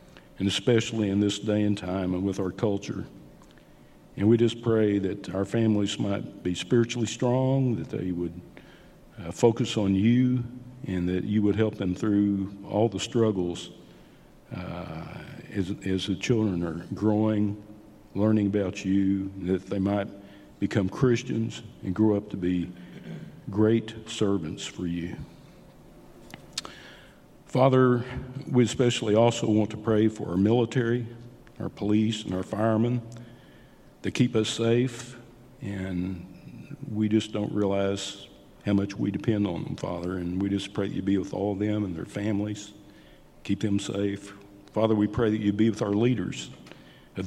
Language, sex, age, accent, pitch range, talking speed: English, male, 50-69, American, 100-115 Hz, 155 wpm